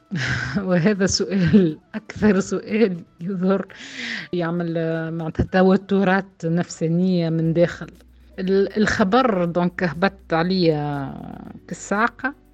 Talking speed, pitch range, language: 70 wpm, 165-205 Hz, Arabic